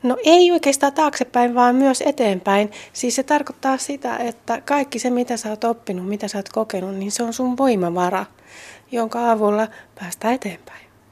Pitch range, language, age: 185-225 Hz, Finnish, 30-49